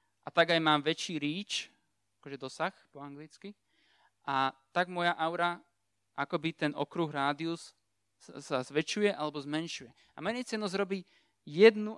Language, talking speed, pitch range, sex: Slovak, 135 wpm, 140-180 Hz, male